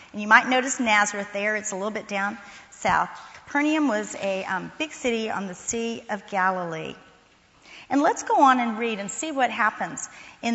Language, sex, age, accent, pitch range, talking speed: English, female, 40-59, American, 195-265 Hz, 195 wpm